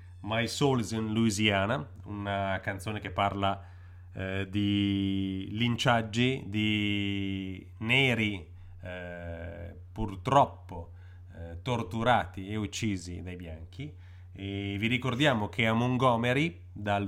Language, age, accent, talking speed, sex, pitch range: Italian, 30-49, native, 100 wpm, male, 90-115 Hz